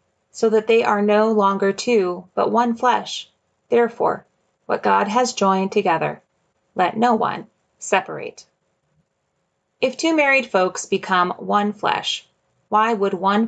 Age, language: 30-49, English